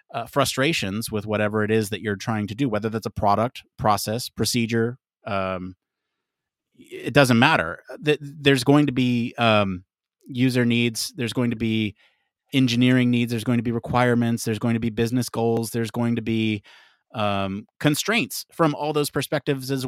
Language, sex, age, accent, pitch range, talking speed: English, male, 30-49, American, 105-130 Hz, 170 wpm